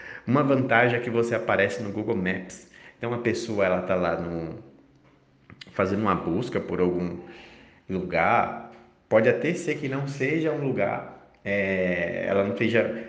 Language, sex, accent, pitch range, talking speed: Portuguese, male, Brazilian, 95-120 Hz, 155 wpm